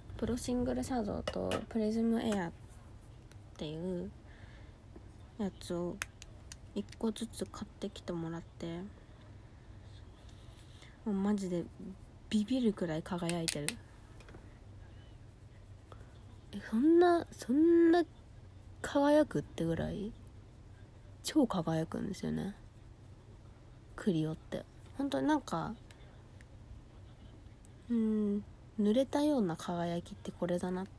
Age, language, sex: 20-39, Japanese, female